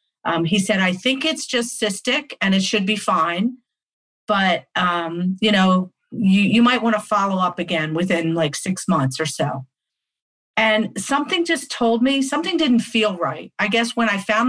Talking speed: 185 wpm